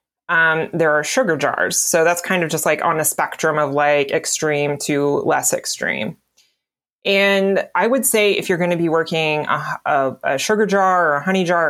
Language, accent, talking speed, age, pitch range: English, American, 200 wpm, 20-39, 160-195 Hz